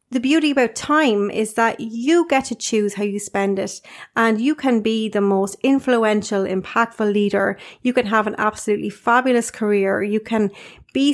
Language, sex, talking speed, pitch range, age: English, female, 180 wpm, 205-240 Hz, 30-49